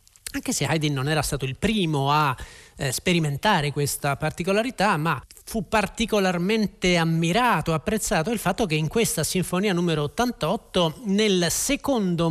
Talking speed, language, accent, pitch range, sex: 135 wpm, Italian, native, 150-190 Hz, male